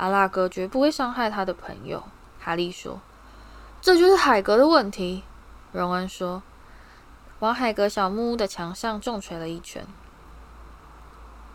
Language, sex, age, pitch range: Chinese, female, 10-29, 180-260 Hz